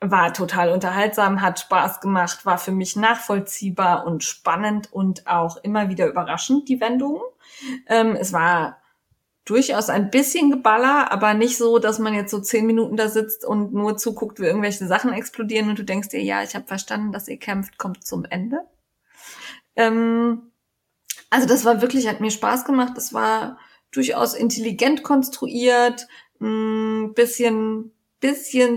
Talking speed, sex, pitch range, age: 155 wpm, female, 200-245 Hz, 20-39